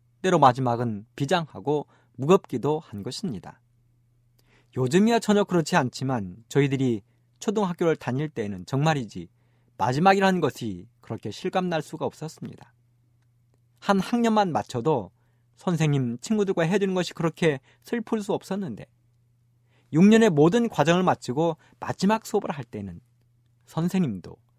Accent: native